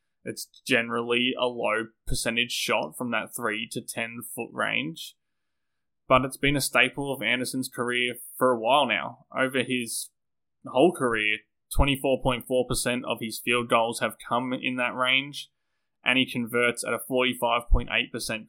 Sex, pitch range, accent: male, 115-130 Hz, Australian